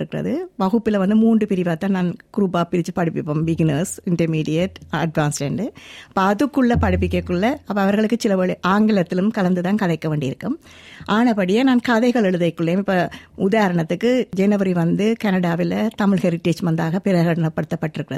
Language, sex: Tamil, female